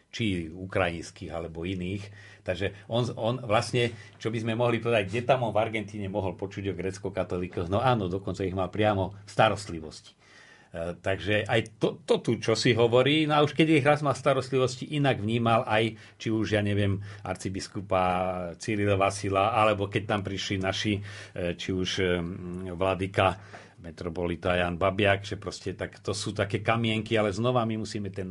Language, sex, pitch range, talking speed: Slovak, male, 95-110 Hz, 165 wpm